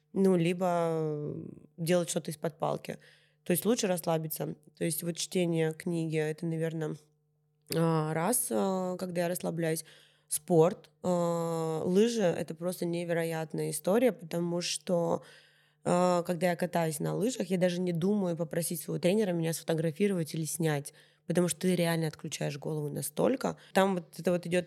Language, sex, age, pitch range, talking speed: Russian, female, 20-39, 160-180 Hz, 140 wpm